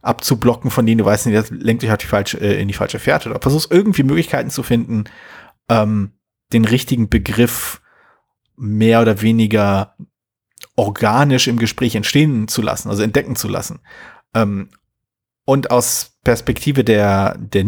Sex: male